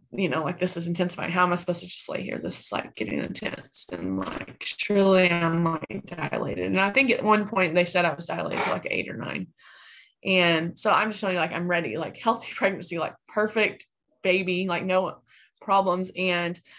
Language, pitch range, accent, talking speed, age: English, 175-210 Hz, American, 215 wpm, 20-39